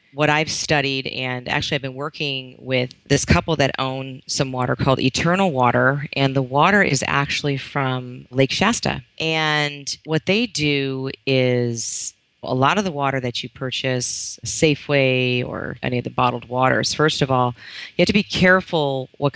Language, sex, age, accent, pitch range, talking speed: English, female, 30-49, American, 125-150 Hz, 170 wpm